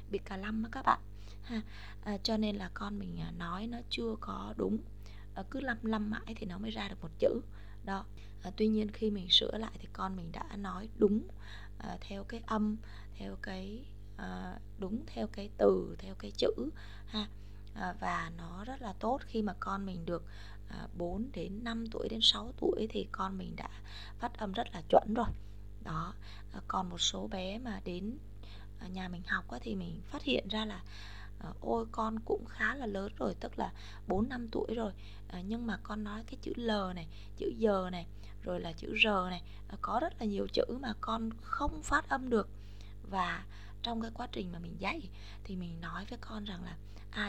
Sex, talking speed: female, 205 wpm